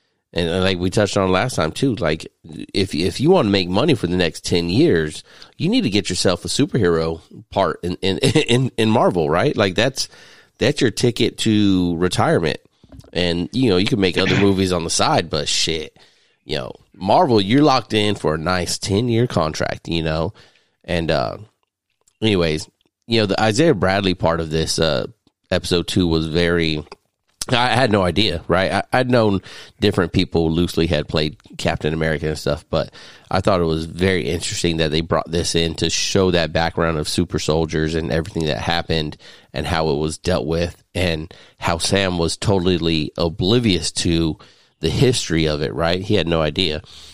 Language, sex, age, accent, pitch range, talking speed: English, male, 30-49, American, 80-105 Hz, 185 wpm